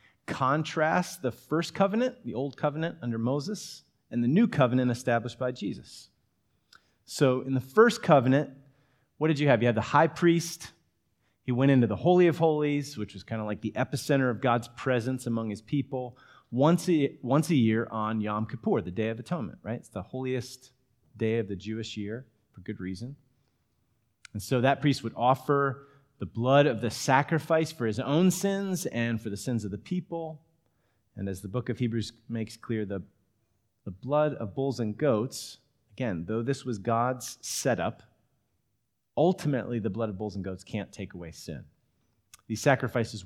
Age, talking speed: 30-49, 180 wpm